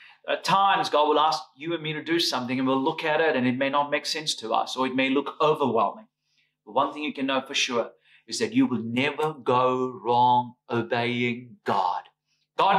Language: English